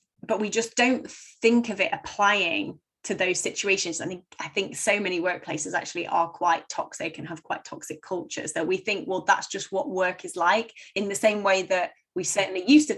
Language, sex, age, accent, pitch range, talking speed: English, female, 20-39, British, 180-215 Hz, 215 wpm